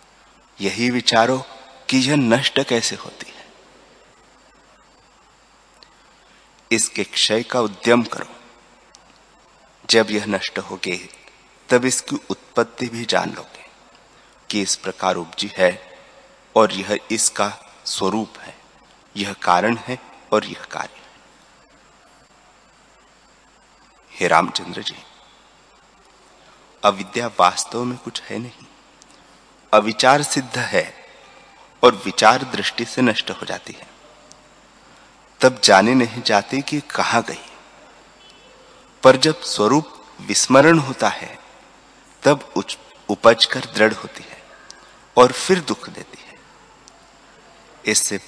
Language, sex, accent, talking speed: Hindi, male, native, 105 wpm